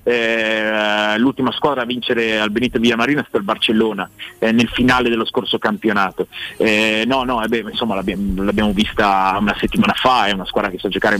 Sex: male